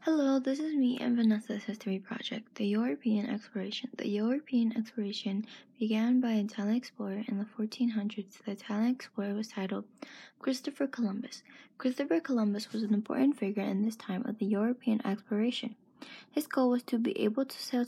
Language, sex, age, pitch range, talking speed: English, female, 20-39, 210-250 Hz, 170 wpm